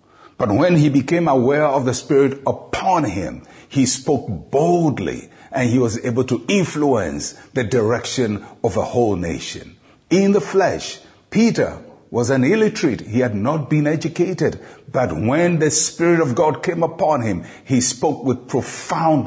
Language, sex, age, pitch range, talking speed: English, male, 60-79, 115-160 Hz, 155 wpm